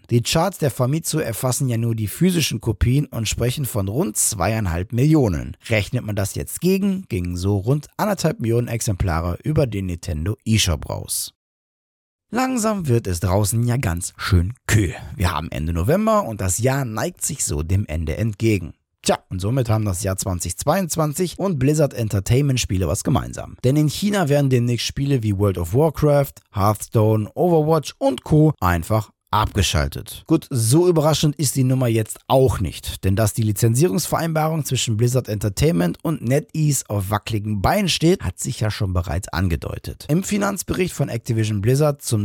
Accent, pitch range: German, 100-145 Hz